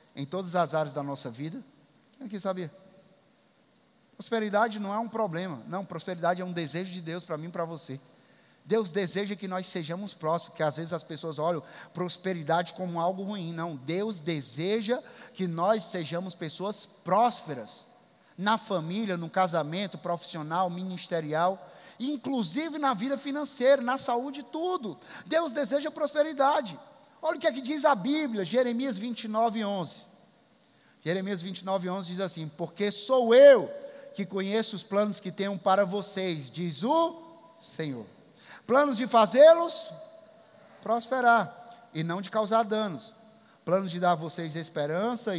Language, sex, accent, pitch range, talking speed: Portuguese, male, Brazilian, 175-240 Hz, 145 wpm